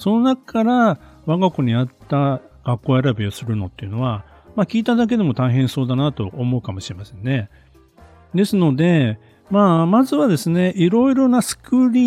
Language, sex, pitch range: Japanese, male, 115-185 Hz